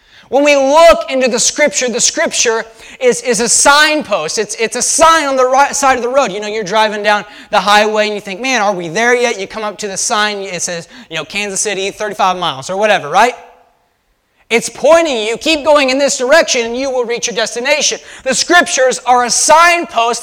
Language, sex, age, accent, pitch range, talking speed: English, male, 20-39, American, 225-290 Hz, 220 wpm